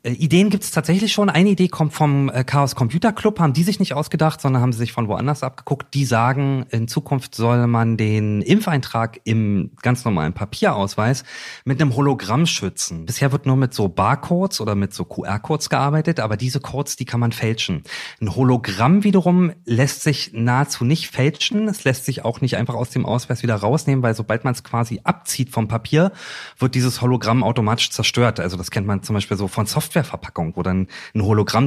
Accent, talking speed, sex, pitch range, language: German, 195 wpm, male, 110-155 Hz, German